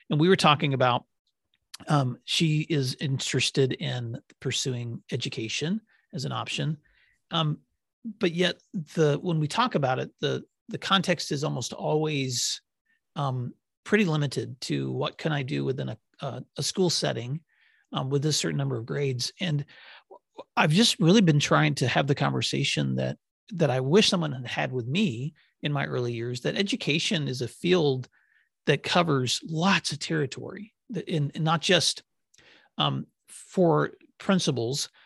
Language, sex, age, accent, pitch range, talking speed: English, male, 40-59, American, 130-170 Hz, 155 wpm